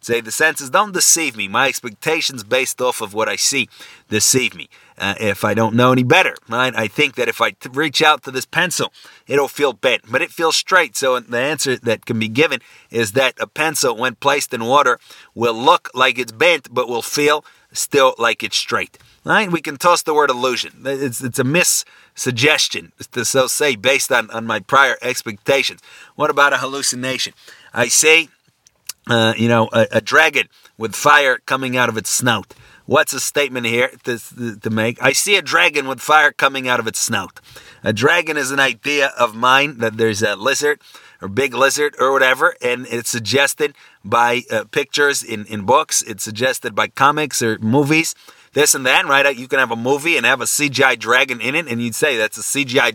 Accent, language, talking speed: American, English, 205 wpm